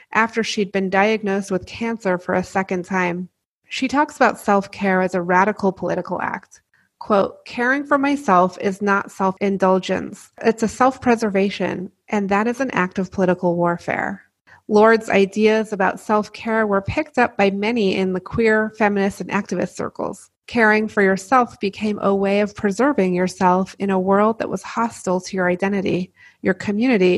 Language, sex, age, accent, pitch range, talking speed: English, female, 30-49, American, 185-220 Hz, 160 wpm